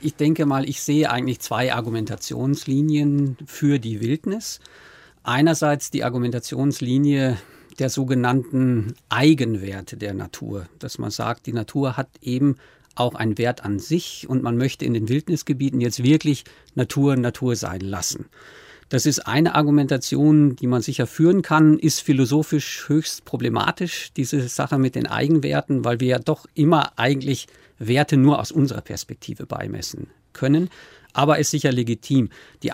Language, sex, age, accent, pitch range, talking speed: German, male, 50-69, German, 125-150 Hz, 145 wpm